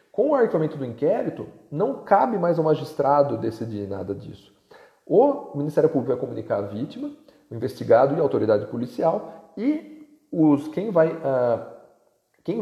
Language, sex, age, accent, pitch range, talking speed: Portuguese, male, 40-59, Brazilian, 140-190 Hz, 150 wpm